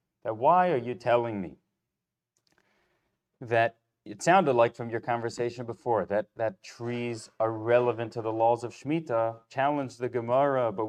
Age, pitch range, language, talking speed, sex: 30-49, 120-155 Hz, English, 155 wpm, male